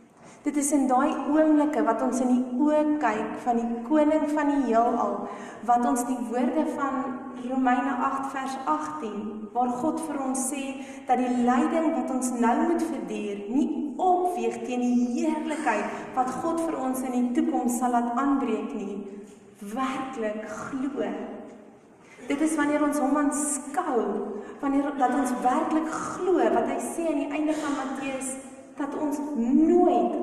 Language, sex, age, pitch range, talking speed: English, female, 40-59, 240-290 Hz, 160 wpm